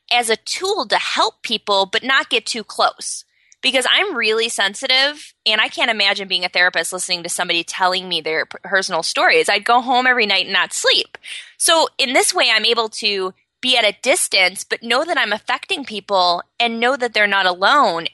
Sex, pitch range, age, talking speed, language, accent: female, 185-245 Hz, 20-39, 200 wpm, English, American